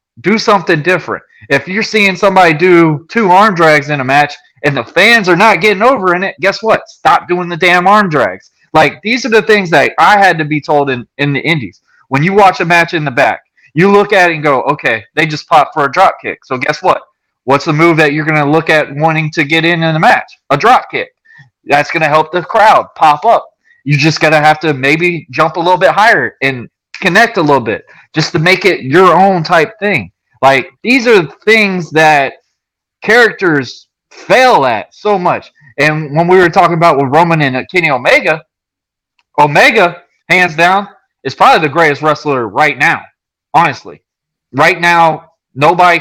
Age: 20-39